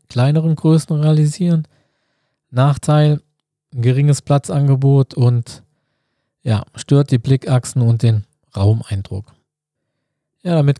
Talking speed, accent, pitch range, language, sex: 80 wpm, German, 125-150 Hz, German, male